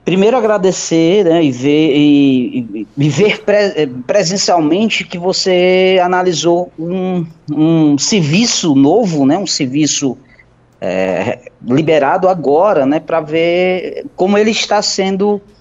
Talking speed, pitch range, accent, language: 100 wpm, 145-215 Hz, Brazilian, Portuguese